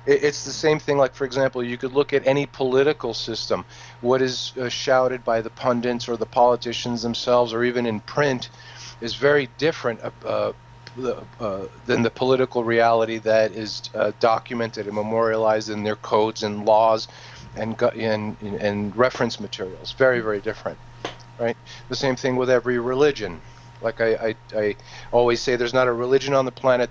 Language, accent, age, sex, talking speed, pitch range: English, American, 40-59, male, 175 wpm, 115-125 Hz